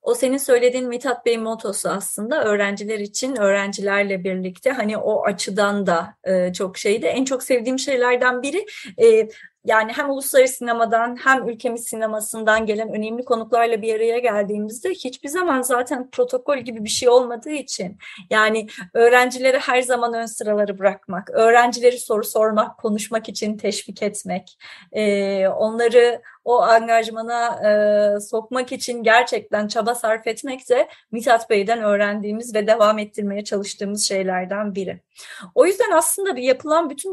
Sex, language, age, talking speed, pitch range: female, Turkish, 30-49, 140 wpm, 210-260 Hz